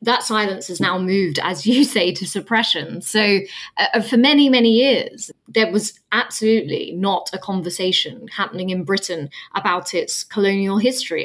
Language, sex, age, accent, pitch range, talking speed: English, female, 20-39, British, 185-230 Hz, 155 wpm